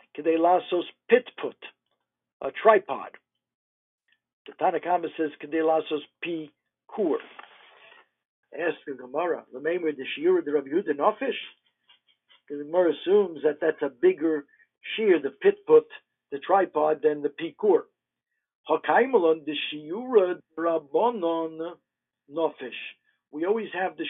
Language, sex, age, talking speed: English, male, 60-79, 110 wpm